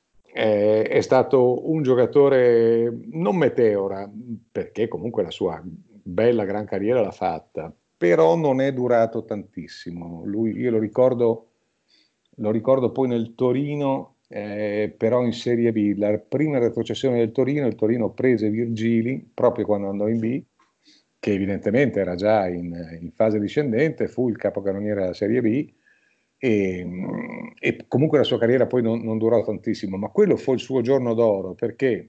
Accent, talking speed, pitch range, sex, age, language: native, 155 wpm, 105-130 Hz, male, 50-69, Italian